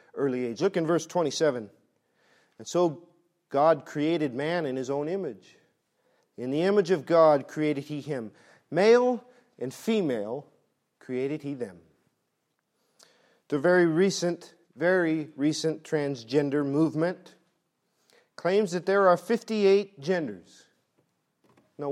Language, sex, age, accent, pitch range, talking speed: English, male, 40-59, American, 140-200 Hz, 120 wpm